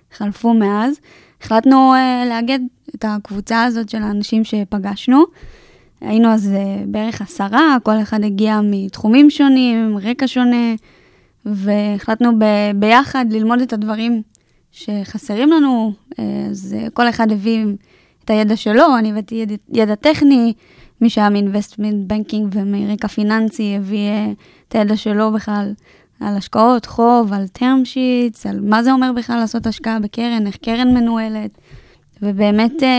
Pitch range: 210-235 Hz